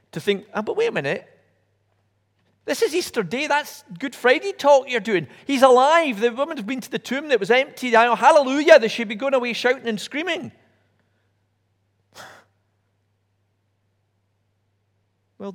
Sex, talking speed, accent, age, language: male, 145 wpm, British, 40-59, English